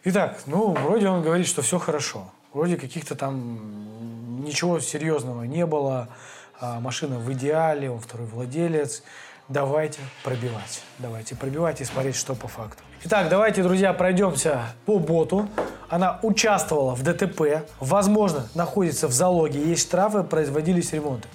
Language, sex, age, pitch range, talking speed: Russian, male, 20-39, 145-200 Hz, 140 wpm